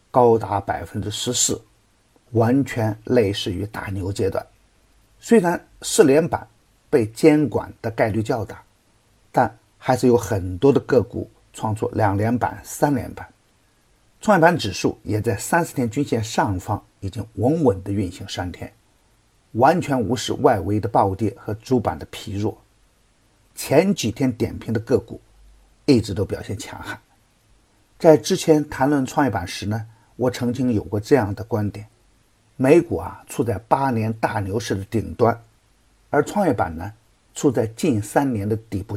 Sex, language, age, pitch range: male, Chinese, 50-69, 105-125 Hz